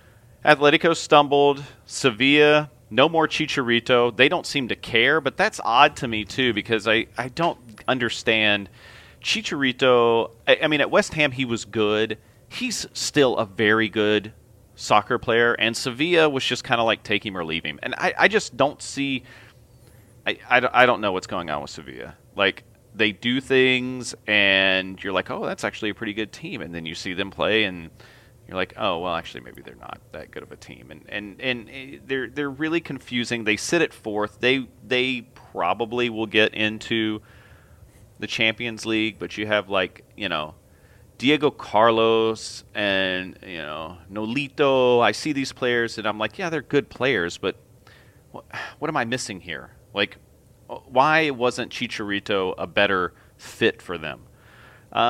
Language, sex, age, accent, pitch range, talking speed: English, male, 30-49, American, 105-130 Hz, 175 wpm